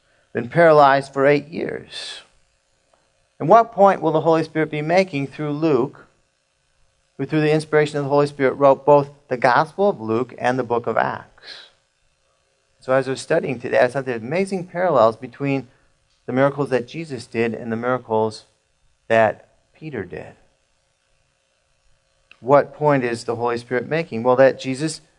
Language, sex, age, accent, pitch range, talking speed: English, male, 40-59, American, 120-175 Hz, 160 wpm